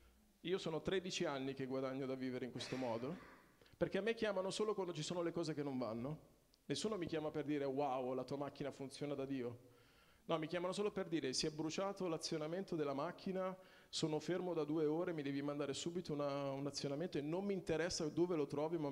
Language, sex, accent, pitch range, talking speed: Italian, male, native, 125-160 Hz, 215 wpm